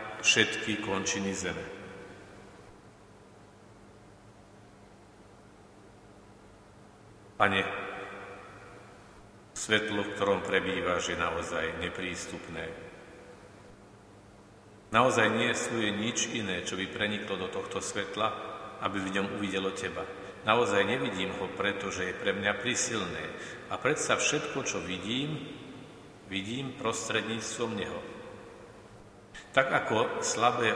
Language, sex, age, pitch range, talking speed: Slovak, male, 50-69, 100-110 Hz, 95 wpm